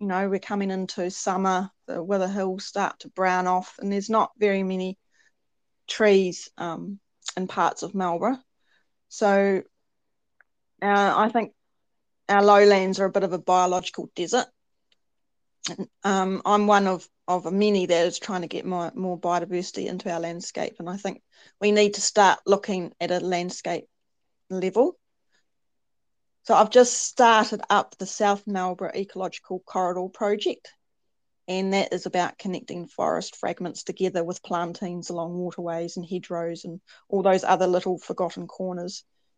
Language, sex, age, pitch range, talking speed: English, female, 30-49, 180-200 Hz, 150 wpm